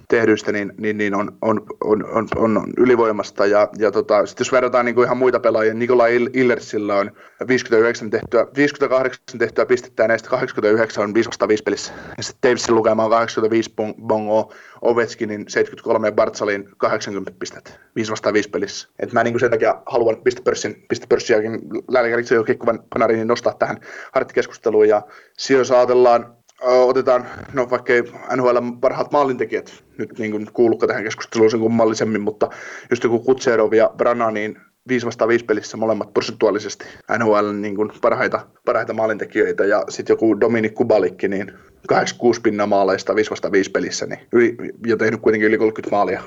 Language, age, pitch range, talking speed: Finnish, 20-39, 110-125 Hz, 155 wpm